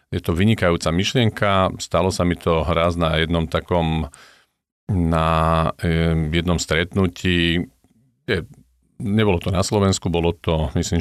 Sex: male